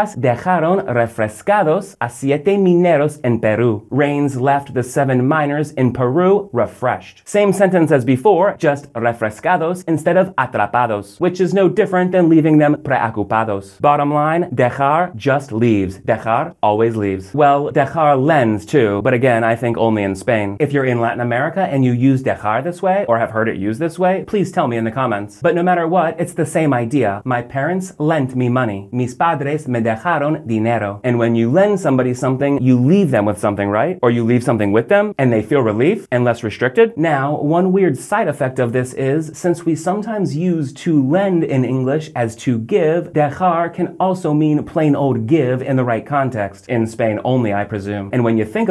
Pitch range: 120-175 Hz